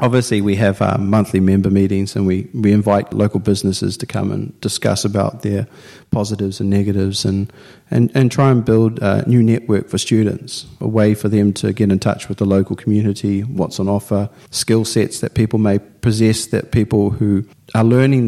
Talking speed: 190 wpm